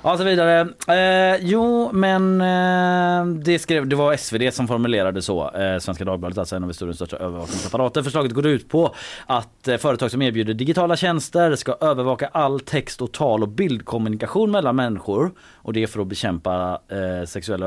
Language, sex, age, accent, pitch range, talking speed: Swedish, male, 30-49, native, 95-145 Hz, 160 wpm